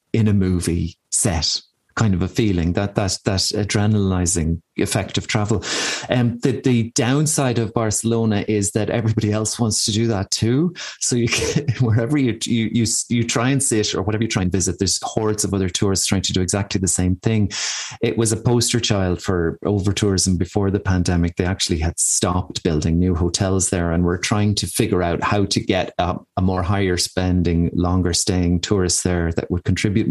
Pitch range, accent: 95-120 Hz, Irish